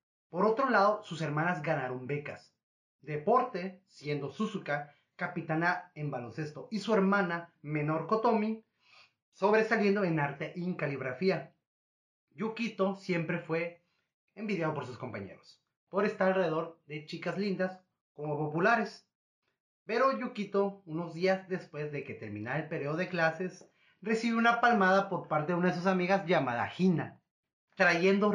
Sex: male